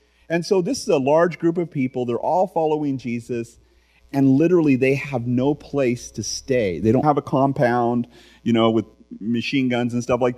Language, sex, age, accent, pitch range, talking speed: English, male, 30-49, American, 110-155 Hz, 195 wpm